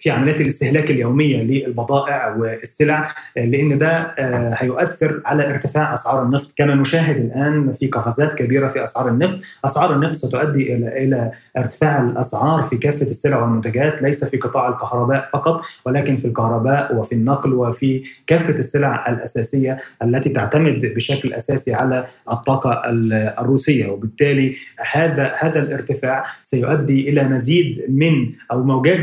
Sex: male